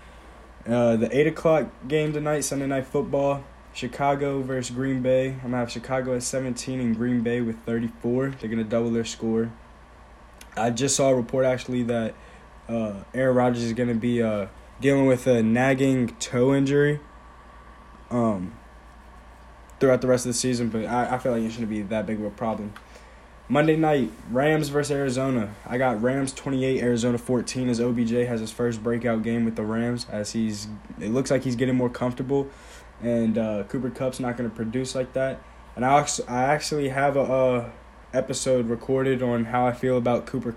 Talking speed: 185 wpm